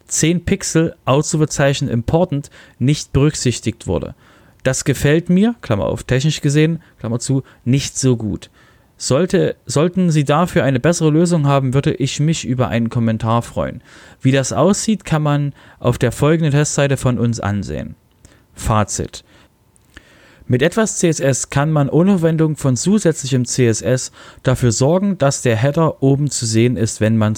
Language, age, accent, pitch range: German, 40-59, German, 120-160 Hz